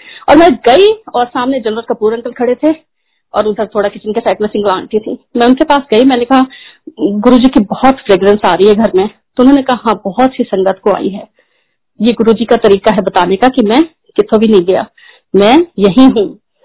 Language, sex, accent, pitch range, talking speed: Hindi, female, native, 215-345 Hz, 205 wpm